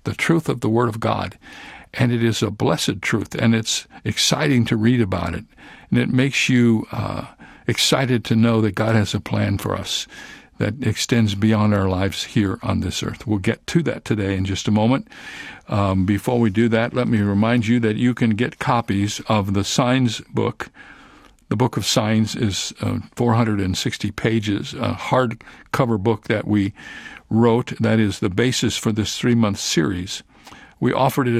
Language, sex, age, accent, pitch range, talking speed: English, male, 60-79, American, 105-120 Hz, 185 wpm